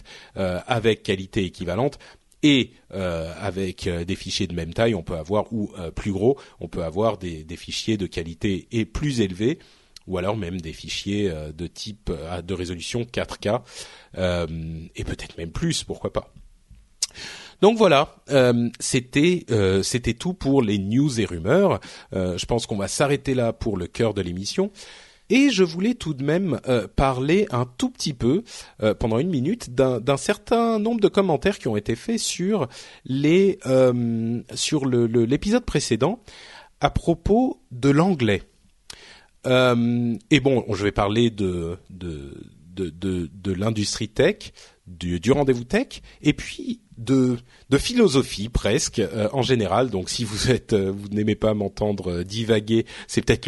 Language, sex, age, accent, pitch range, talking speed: French, male, 40-59, French, 95-140 Hz, 155 wpm